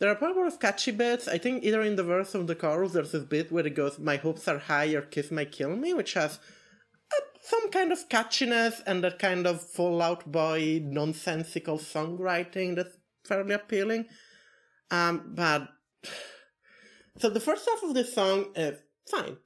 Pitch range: 155-210 Hz